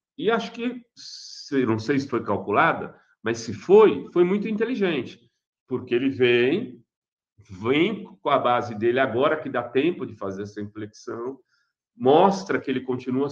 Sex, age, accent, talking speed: male, 40-59, Brazilian, 155 wpm